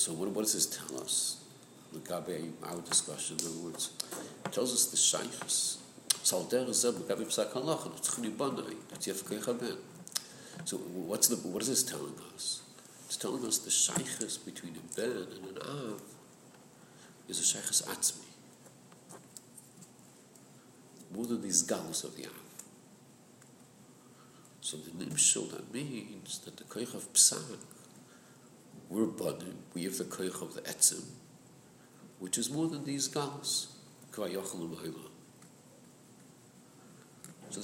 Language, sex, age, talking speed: English, male, 50-69, 120 wpm